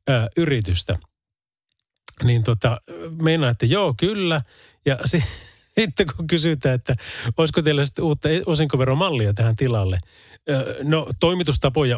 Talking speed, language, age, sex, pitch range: 95 wpm, Finnish, 30-49, male, 105-150 Hz